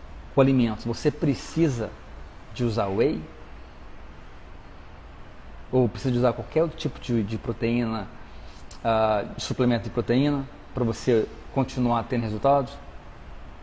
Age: 40-59